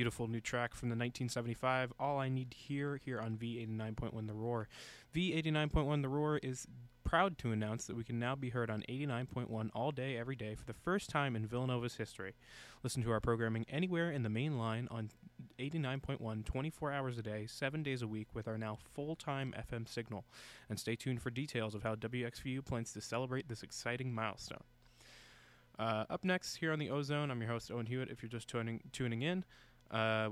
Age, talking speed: 20-39, 200 wpm